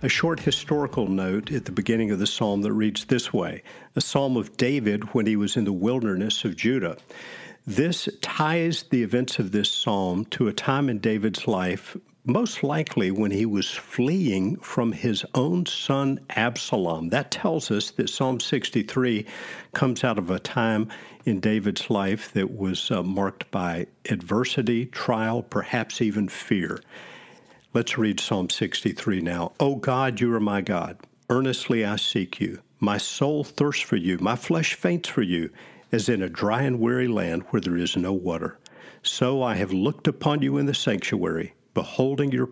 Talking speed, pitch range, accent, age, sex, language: 170 wpm, 105-140 Hz, American, 50-69, male, English